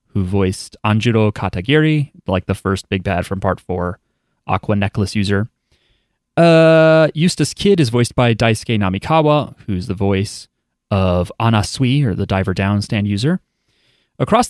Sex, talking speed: male, 140 wpm